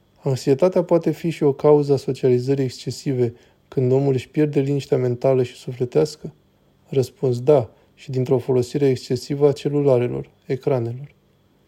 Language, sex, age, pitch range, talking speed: Romanian, male, 20-39, 125-145 Hz, 135 wpm